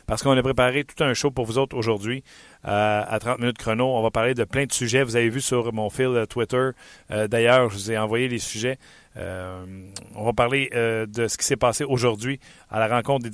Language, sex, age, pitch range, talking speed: French, male, 40-59, 115-135 Hz, 245 wpm